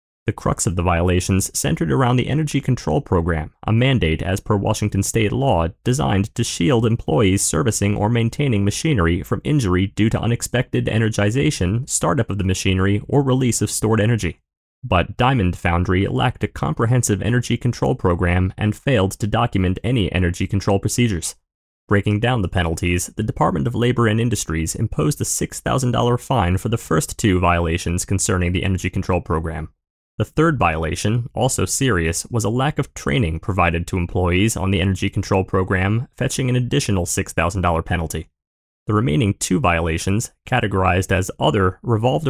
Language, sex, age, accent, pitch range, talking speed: English, male, 30-49, American, 90-120 Hz, 160 wpm